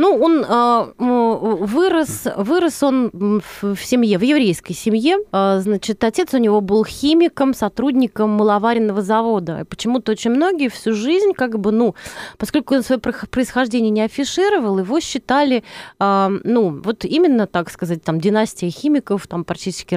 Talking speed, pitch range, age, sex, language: 140 wpm, 200-260 Hz, 30-49, female, Russian